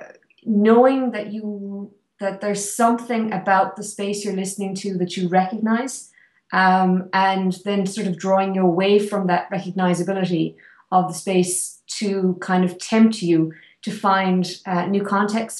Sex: female